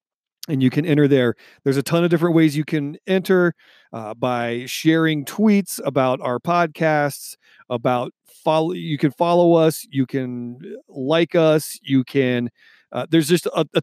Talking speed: 165 wpm